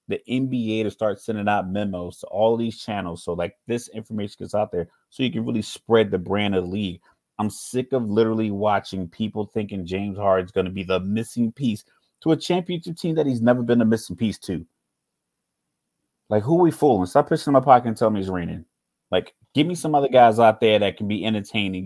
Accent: American